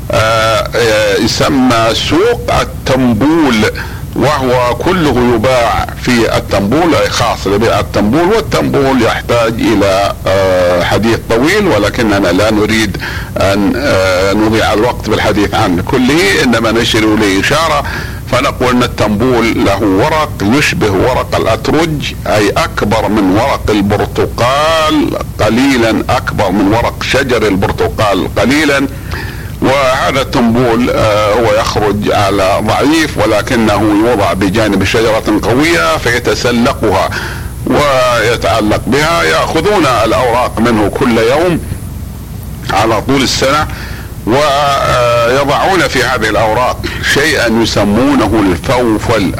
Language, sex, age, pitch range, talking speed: Arabic, male, 50-69, 105-125 Hz, 100 wpm